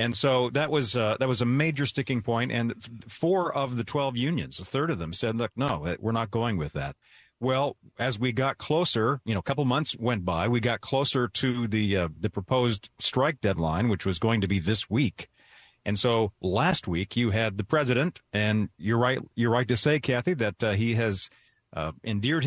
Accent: American